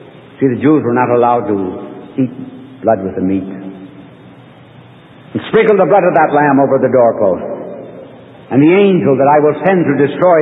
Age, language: 60-79, English